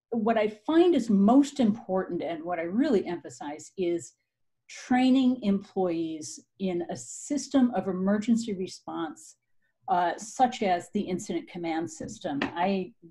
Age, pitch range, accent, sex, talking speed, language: 50-69, 180-225 Hz, American, female, 130 wpm, English